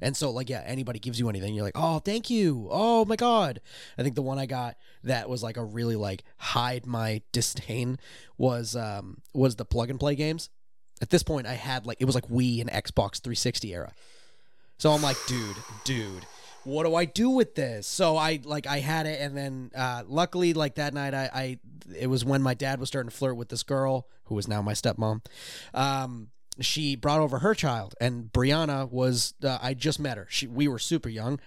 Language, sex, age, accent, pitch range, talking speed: English, male, 20-39, American, 115-140 Hz, 215 wpm